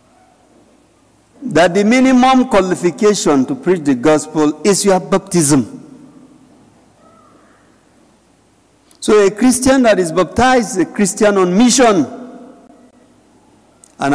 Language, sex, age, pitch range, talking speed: English, male, 50-69, 175-245 Hz, 100 wpm